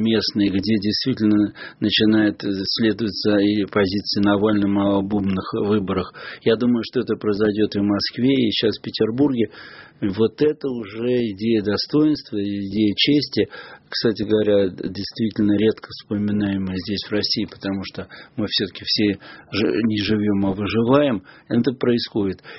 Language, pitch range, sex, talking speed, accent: Russian, 100-120 Hz, male, 130 wpm, native